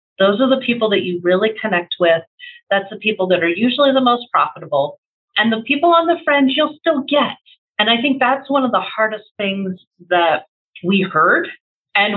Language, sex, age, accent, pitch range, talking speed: English, female, 30-49, American, 170-235 Hz, 195 wpm